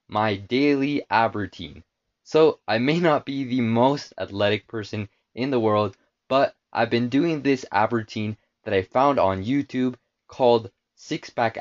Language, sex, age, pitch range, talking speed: English, male, 20-39, 105-130 Hz, 160 wpm